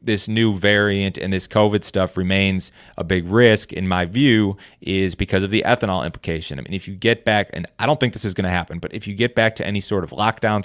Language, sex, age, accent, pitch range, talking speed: English, male, 30-49, American, 90-105 Hz, 255 wpm